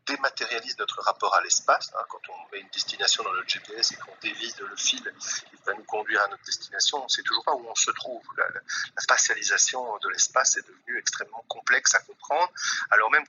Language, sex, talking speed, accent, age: French, male, 210 wpm, French, 40-59